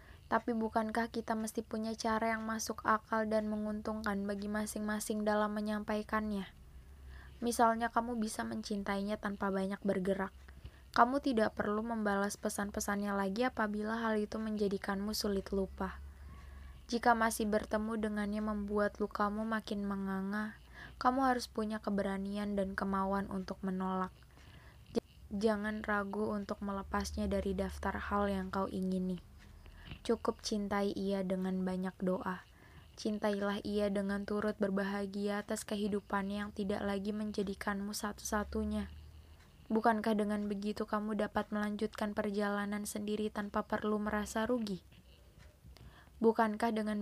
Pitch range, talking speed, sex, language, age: 200-220 Hz, 120 wpm, female, Indonesian, 20-39